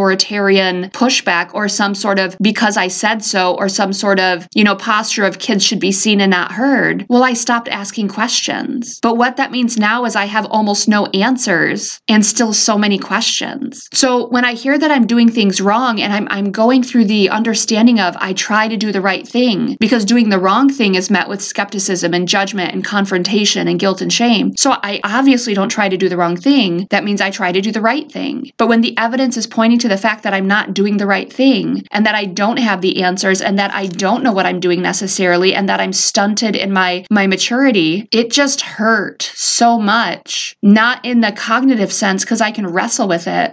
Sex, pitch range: female, 195-240 Hz